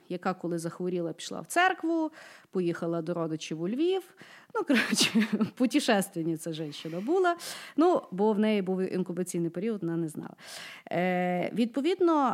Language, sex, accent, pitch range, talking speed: Ukrainian, female, native, 175-240 Hz, 145 wpm